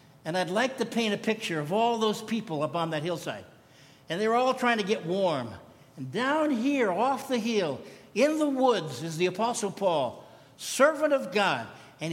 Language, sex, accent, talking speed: English, male, American, 200 wpm